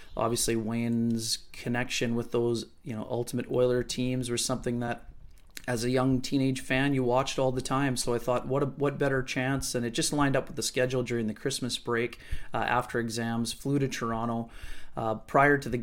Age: 30-49